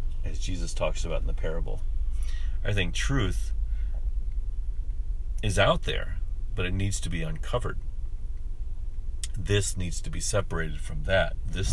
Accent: American